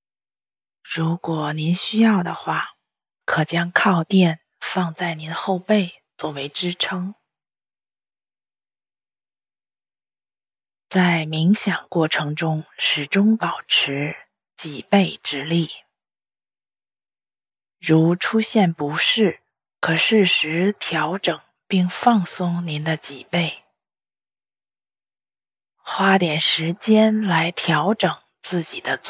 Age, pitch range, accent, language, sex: 20-39, 160-195 Hz, Chinese, English, female